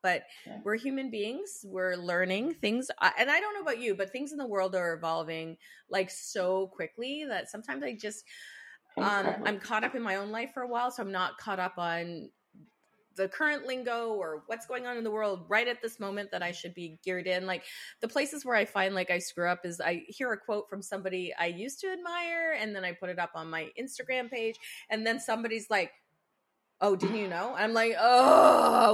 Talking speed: 220 wpm